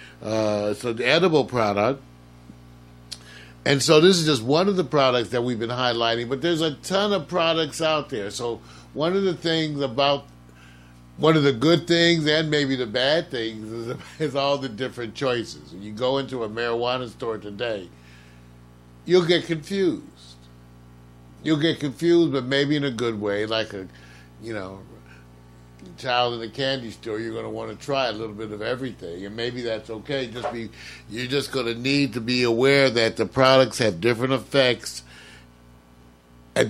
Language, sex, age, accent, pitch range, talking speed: English, male, 60-79, American, 95-140 Hz, 175 wpm